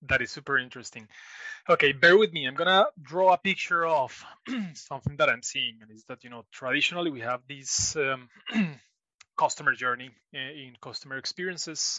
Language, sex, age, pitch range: English, male, 30-49, 125-170 Hz